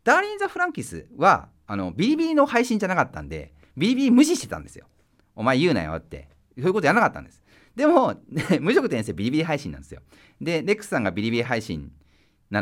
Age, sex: 40-59, male